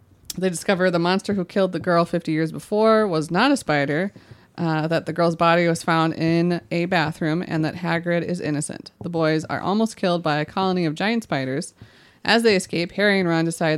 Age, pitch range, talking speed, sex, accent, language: 20-39, 150-185 Hz, 210 wpm, female, American, English